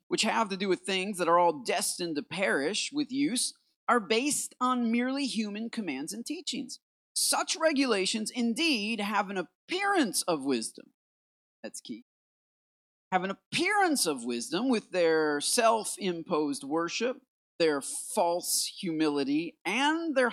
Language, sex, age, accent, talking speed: English, male, 40-59, American, 135 wpm